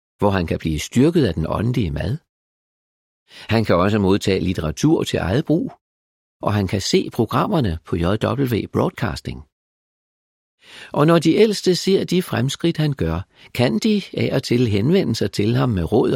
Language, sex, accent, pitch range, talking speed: Danish, male, native, 90-135 Hz, 165 wpm